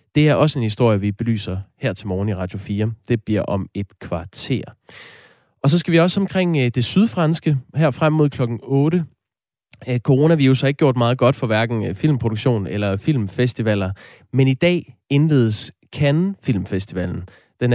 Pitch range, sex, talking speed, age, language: 110-145 Hz, male, 165 wpm, 20-39, Danish